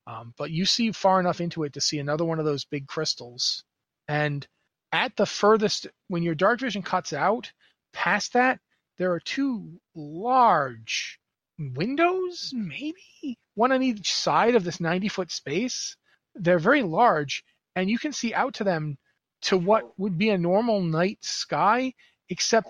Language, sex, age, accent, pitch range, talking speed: English, male, 30-49, American, 155-205 Hz, 165 wpm